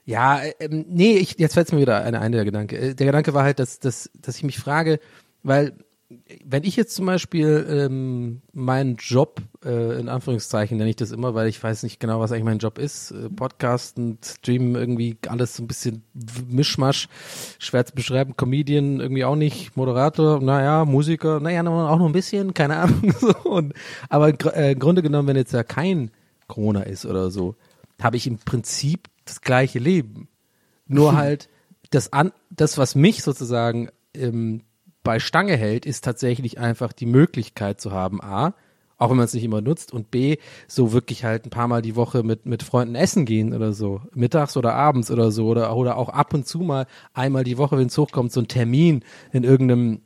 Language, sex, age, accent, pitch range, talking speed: German, male, 40-59, German, 115-150 Hz, 195 wpm